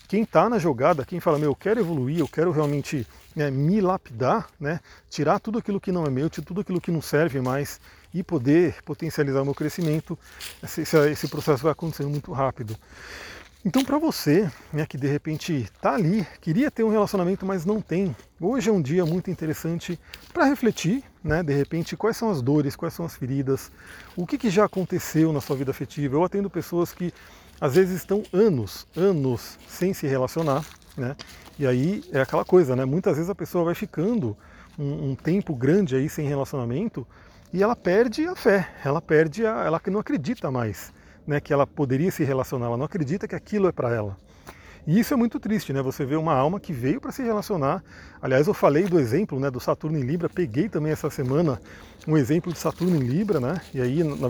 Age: 40-59